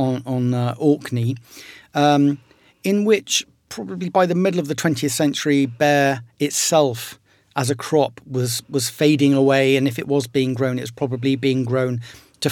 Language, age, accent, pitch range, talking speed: English, 40-59, British, 130-155 Hz, 170 wpm